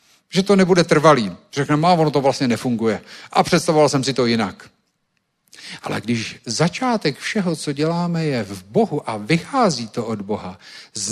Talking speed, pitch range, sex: 165 wpm, 115-160 Hz, male